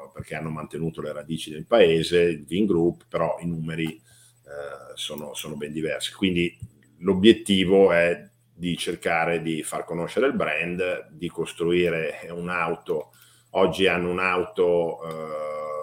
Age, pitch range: 50-69, 80-95 Hz